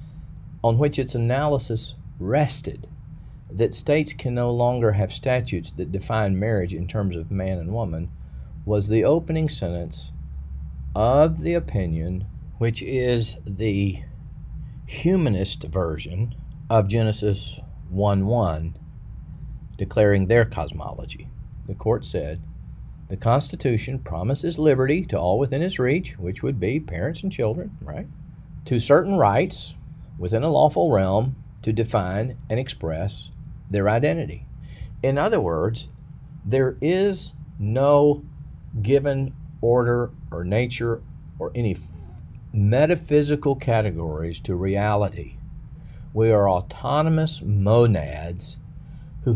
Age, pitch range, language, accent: 50-69, 95-140 Hz, English, American